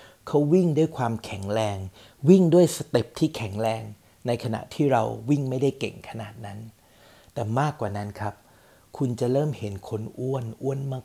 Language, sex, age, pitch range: Thai, male, 60-79, 110-135 Hz